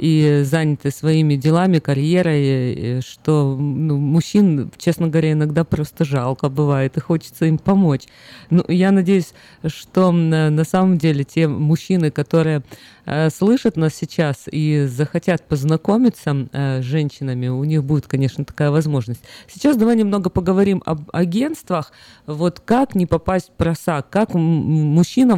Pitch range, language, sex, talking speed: 140-175 Hz, Russian, female, 140 wpm